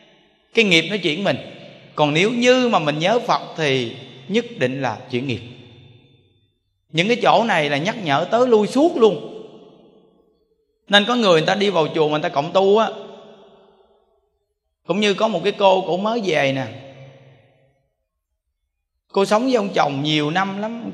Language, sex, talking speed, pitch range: Vietnamese, male, 180 wpm, 135-195 Hz